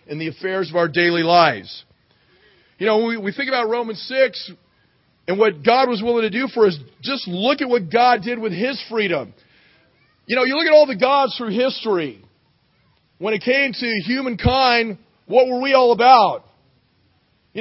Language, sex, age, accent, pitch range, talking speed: English, male, 40-59, American, 200-260 Hz, 185 wpm